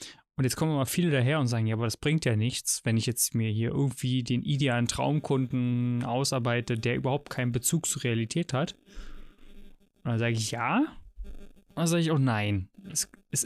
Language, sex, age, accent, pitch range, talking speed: German, male, 20-39, German, 120-160 Hz, 200 wpm